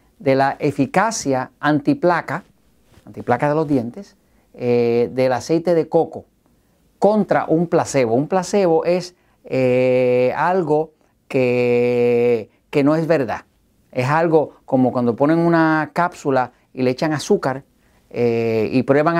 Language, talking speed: Spanish, 125 wpm